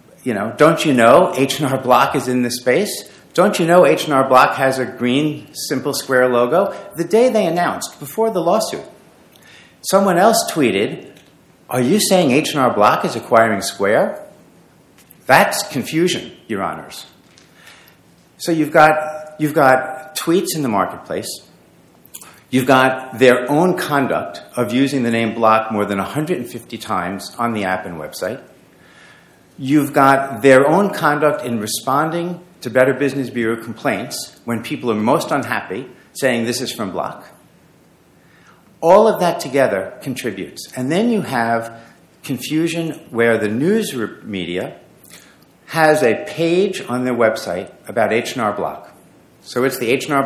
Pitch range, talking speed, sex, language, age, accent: 115-155 Hz, 150 wpm, male, English, 50-69, American